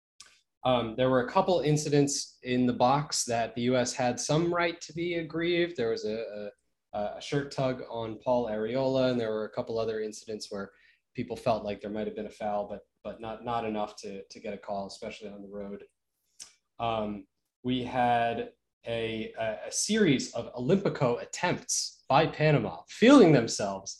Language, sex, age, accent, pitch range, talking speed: English, male, 20-39, American, 110-145 Hz, 185 wpm